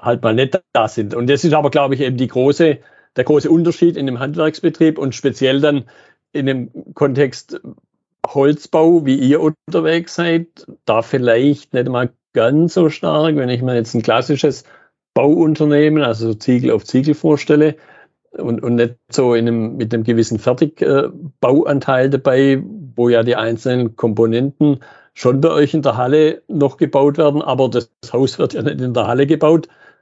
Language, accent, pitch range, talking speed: German, German, 120-155 Hz, 170 wpm